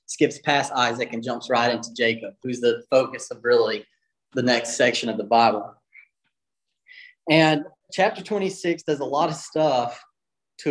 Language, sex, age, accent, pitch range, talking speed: English, male, 30-49, American, 130-165 Hz, 155 wpm